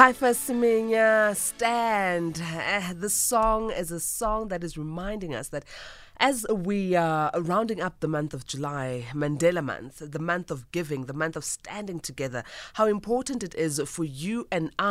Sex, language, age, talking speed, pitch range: female, English, 20-39, 160 wpm, 160-220 Hz